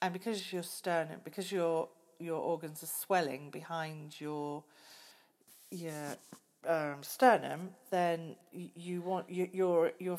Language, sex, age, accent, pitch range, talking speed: English, female, 40-59, British, 160-195 Hz, 125 wpm